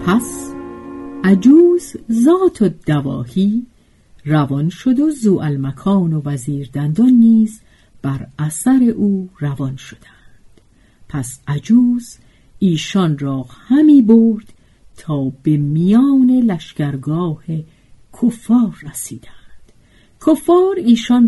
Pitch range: 150-235 Hz